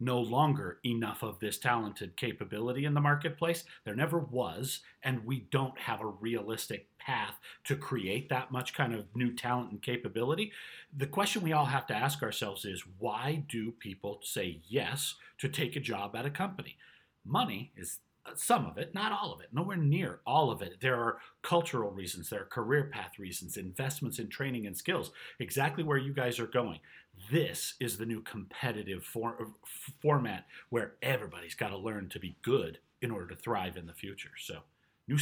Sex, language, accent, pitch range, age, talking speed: male, English, American, 115-145 Hz, 40-59, 185 wpm